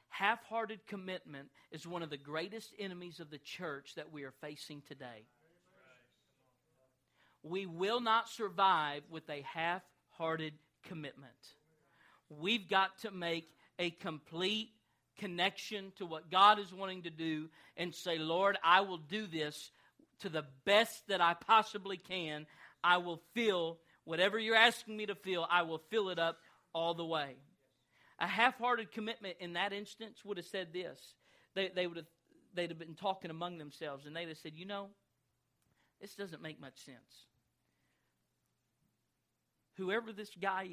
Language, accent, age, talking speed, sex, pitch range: English, American, 40-59, 155 wpm, male, 150-200 Hz